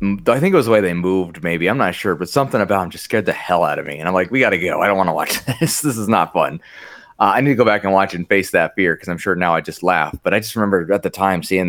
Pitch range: 90-115 Hz